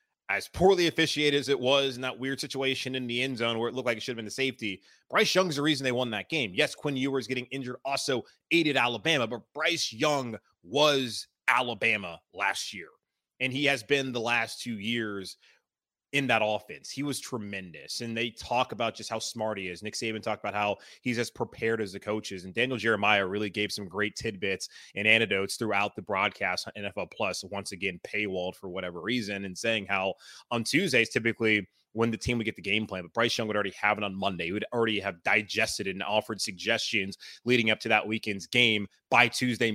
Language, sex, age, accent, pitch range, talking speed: English, male, 20-39, American, 105-130 Hz, 215 wpm